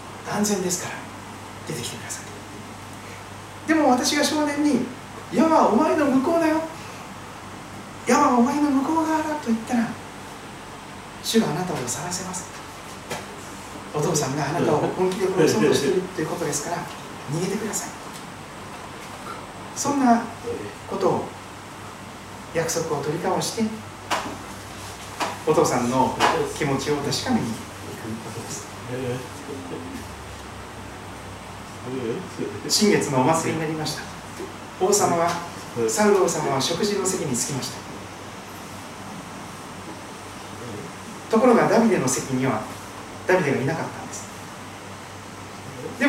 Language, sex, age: Japanese, male, 40-59